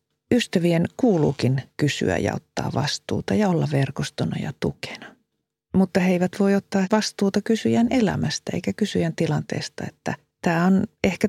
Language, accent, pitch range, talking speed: Finnish, native, 150-200 Hz, 140 wpm